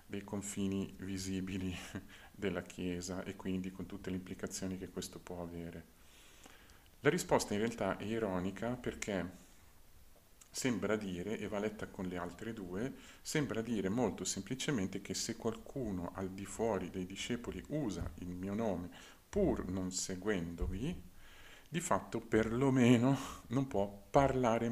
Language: Italian